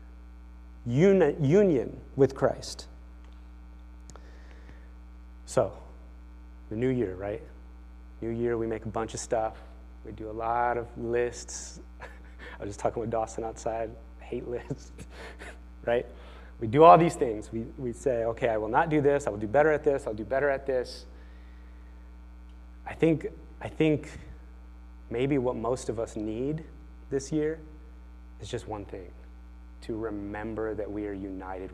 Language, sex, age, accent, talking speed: English, male, 30-49, American, 150 wpm